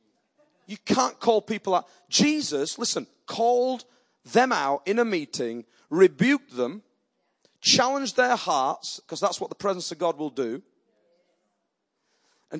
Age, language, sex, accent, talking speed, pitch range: 40-59, English, male, British, 135 wpm, 175-245 Hz